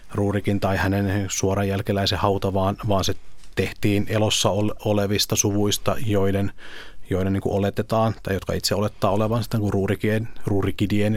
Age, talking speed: 30-49, 130 wpm